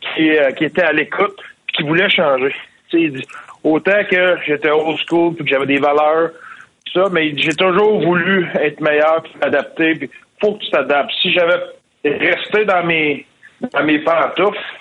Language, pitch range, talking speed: French, 145-180 Hz, 180 wpm